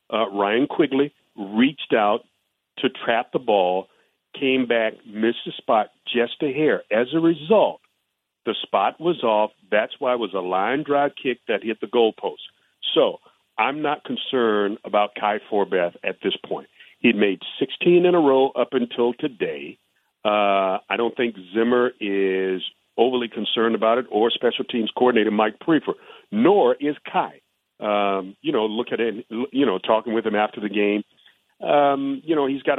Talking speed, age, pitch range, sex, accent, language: 170 wpm, 50-69, 105-140 Hz, male, American, English